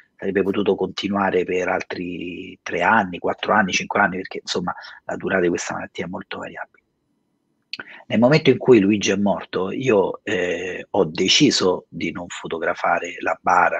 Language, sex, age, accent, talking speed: Italian, male, 40-59, native, 160 wpm